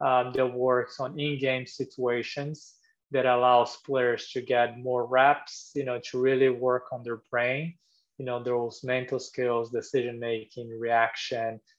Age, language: 20-39, English